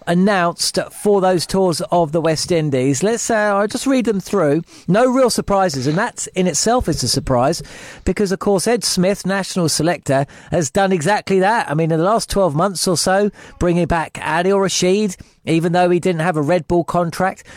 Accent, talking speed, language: British, 200 wpm, English